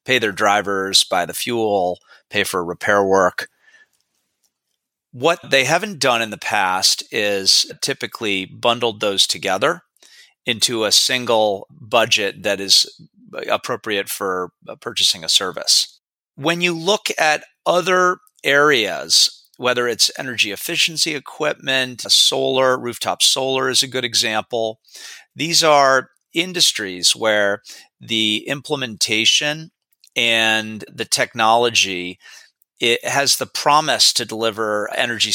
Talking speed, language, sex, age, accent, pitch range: 115 wpm, English, male, 30-49, American, 105-150 Hz